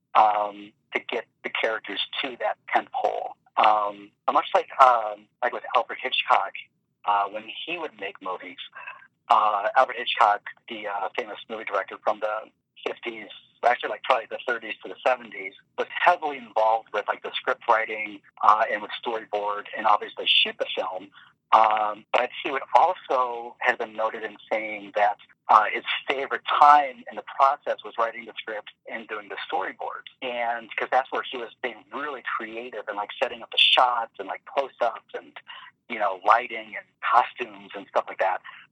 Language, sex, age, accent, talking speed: English, male, 50-69, American, 175 wpm